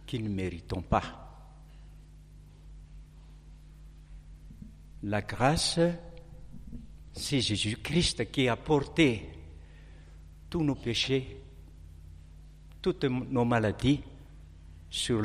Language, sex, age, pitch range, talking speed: French, male, 60-79, 80-120 Hz, 70 wpm